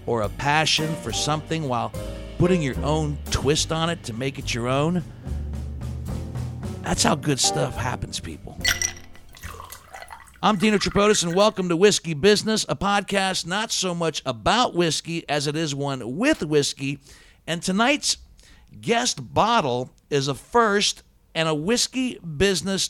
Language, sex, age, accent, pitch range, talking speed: English, male, 60-79, American, 115-170 Hz, 145 wpm